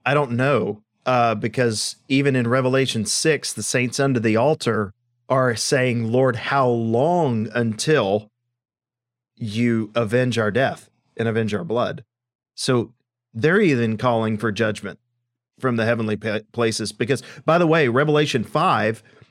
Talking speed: 135 wpm